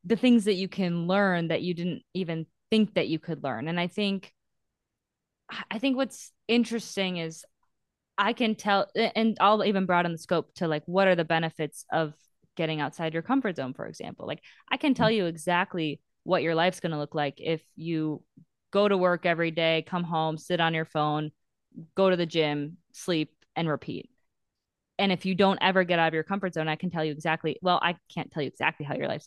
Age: 20-39